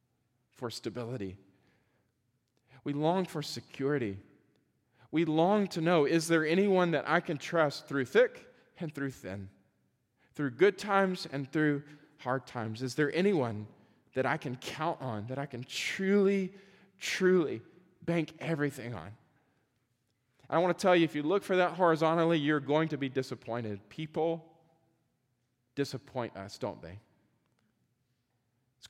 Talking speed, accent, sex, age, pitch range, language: 140 wpm, American, male, 40-59, 125-160 Hz, English